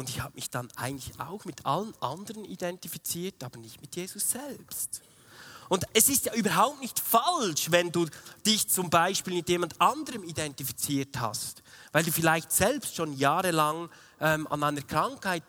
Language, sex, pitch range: German, male, 145-210 Hz